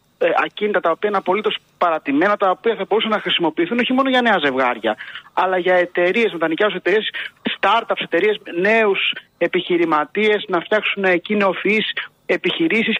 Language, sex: Greek, male